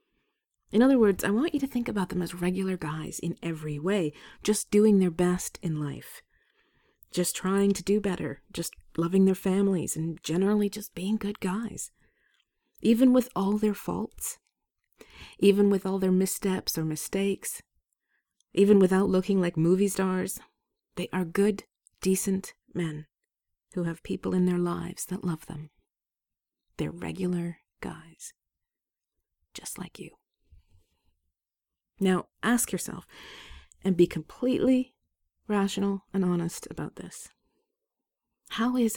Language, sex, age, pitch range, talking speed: English, female, 40-59, 165-200 Hz, 135 wpm